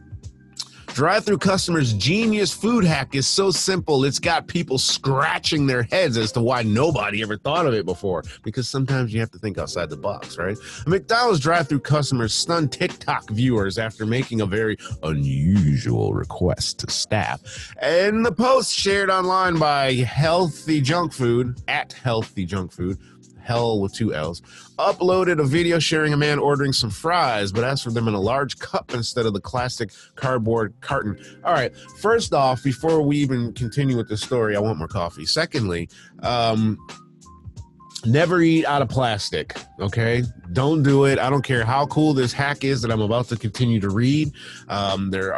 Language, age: English, 30-49